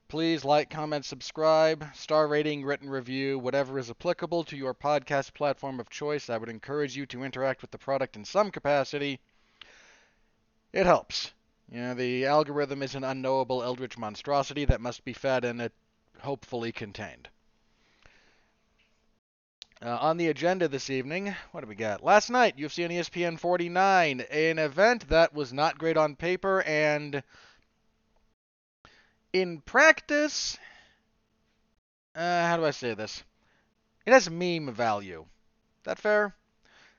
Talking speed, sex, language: 140 wpm, male, English